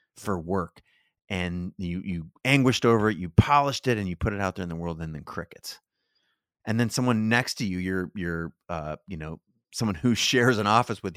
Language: English